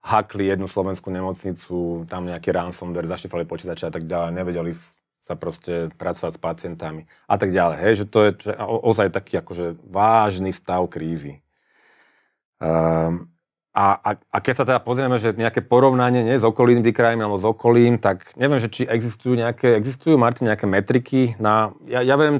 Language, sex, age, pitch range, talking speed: Slovak, male, 30-49, 95-115 Hz, 175 wpm